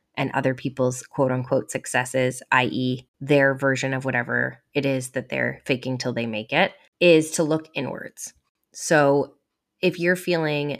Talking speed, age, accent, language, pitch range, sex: 150 wpm, 20-39, American, English, 130-150 Hz, female